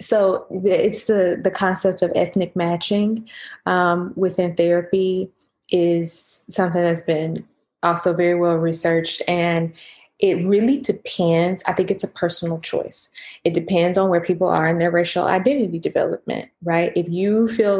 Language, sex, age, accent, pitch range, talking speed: English, female, 20-39, American, 170-205 Hz, 150 wpm